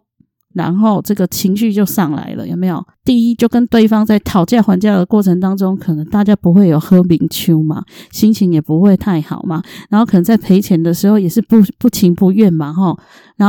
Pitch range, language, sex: 185-230 Hz, Chinese, female